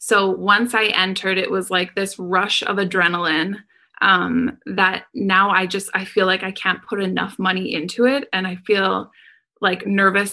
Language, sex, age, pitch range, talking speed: English, female, 20-39, 180-225 Hz, 180 wpm